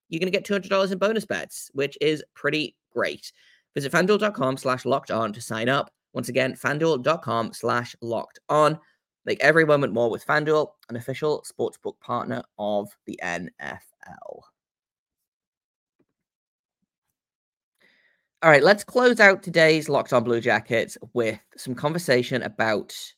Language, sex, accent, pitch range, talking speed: English, male, British, 115-150 Hz, 135 wpm